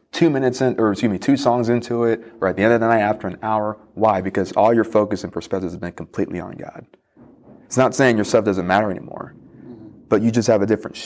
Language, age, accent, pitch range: English, 30-49, American, 95-110 Hz